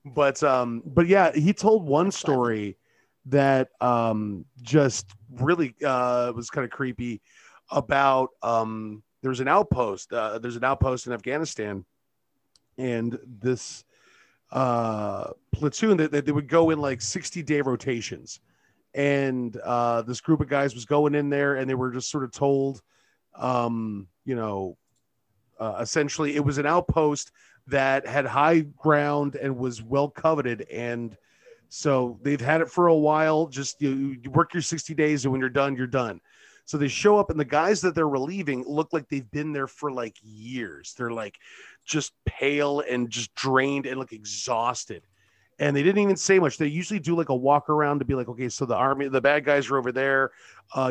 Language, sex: English, male